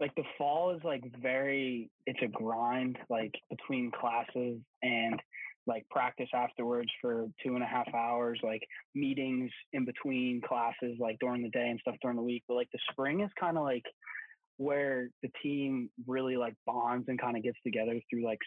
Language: English